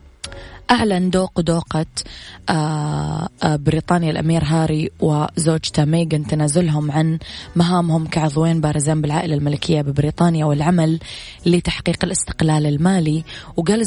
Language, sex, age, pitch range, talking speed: Arabic, female, 20-39, 155-175 Hz, 90 wpm